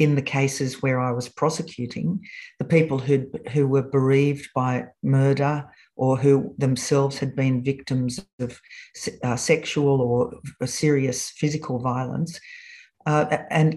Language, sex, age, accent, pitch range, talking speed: English, female, 50-69, Australian, 130-160 Hz, 130 wpm